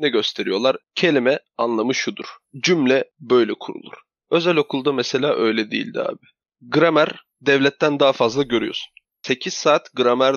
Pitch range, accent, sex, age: 120-160 Hz, native, male, 30-49